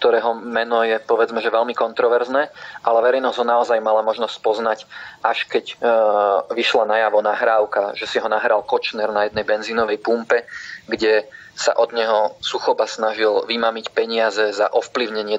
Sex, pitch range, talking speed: male, 110-115 Hz, 150 wpm